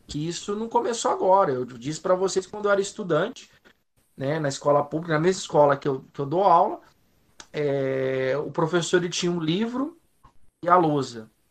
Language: Portuguese